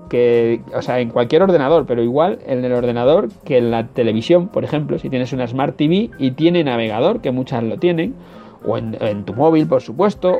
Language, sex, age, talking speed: Spanish, male, 30-49, 210 wpm